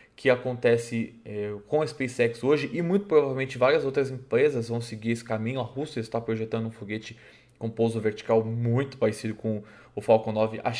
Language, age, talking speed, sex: Portuguese, 20-39, 185 wpm, male